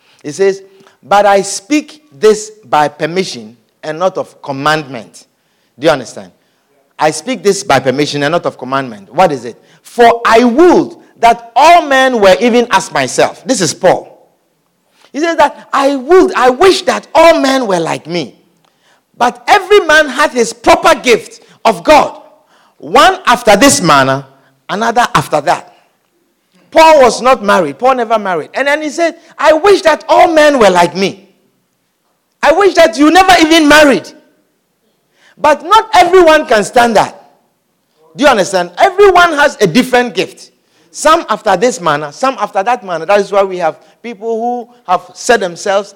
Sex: male